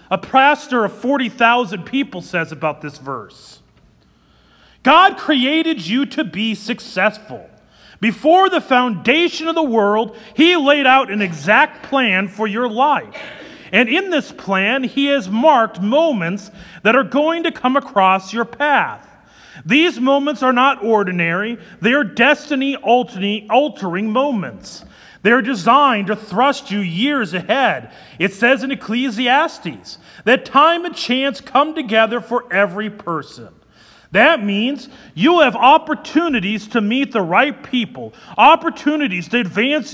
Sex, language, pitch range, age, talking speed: male, English, 210-290 Hz, 40-59, 130 wpm